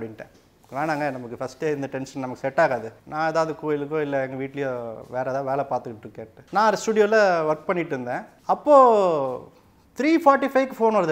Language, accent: Tamil, native